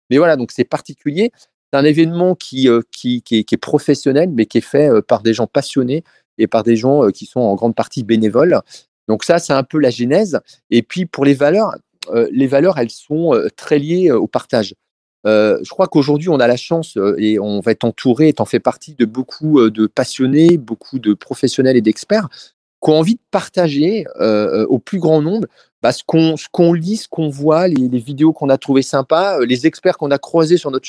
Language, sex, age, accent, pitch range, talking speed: French, male, 40-59, French, 120-160 Hz, 210 wpm